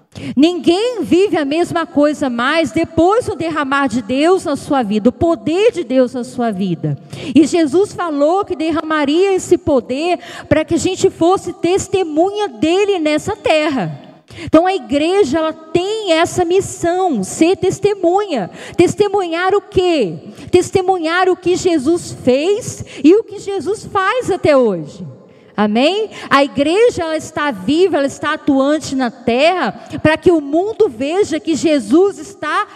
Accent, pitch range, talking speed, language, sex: Brazilian, 290-360 Hz, 145 wpm, Portuguese, female